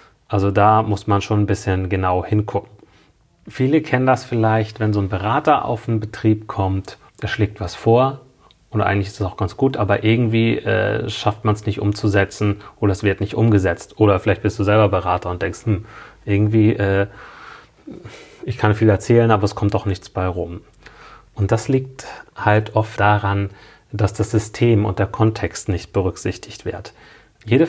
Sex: male